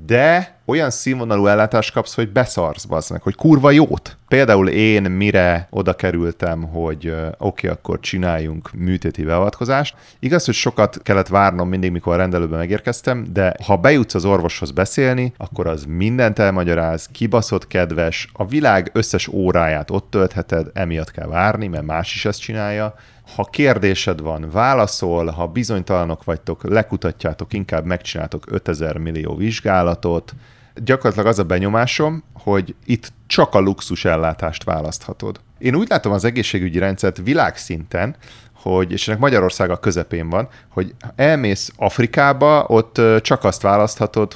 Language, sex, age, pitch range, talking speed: Hungarian, male, 30-49, 90-115 Hz, 140 wpm